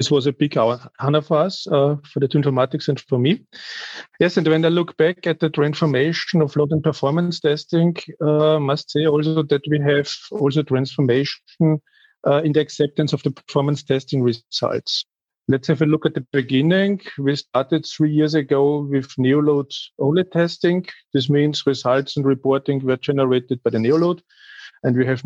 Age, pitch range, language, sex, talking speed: 40-59, 135-160 Hz, English, male, 185 wpm